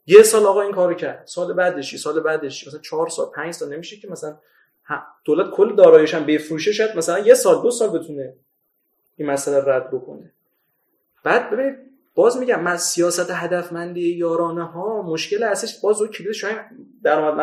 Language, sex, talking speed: Persian, male, 170 wpm